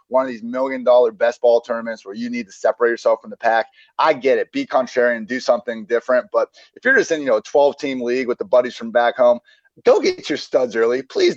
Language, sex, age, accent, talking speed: English, male, 30-49, American, 260 wpm